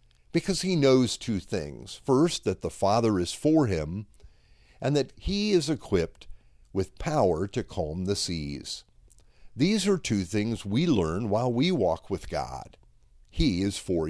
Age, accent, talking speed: 50-69, American, 155 wpm